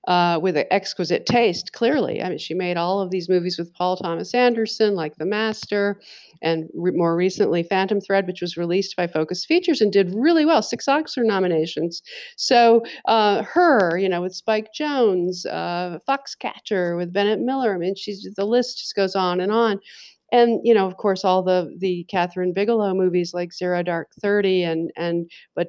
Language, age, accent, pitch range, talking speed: English, 50-69, American, 180-225 Hz, 190 wpm